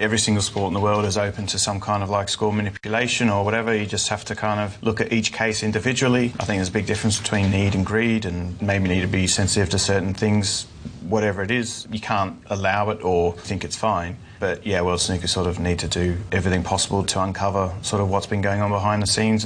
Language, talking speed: English, 245 wpm